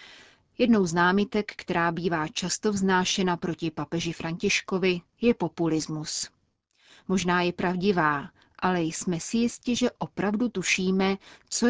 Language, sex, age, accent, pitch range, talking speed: Czech, female, 30-49, native, 165-205 Hz, 120 wpm